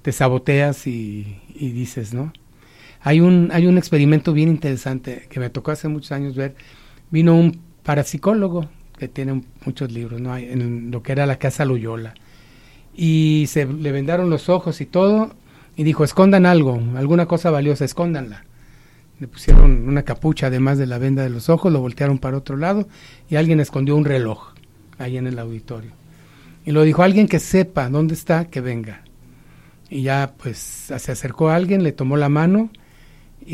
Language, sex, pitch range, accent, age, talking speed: Spanish, male, 130-165 Hz, Mexican, 40-59, 175 wpm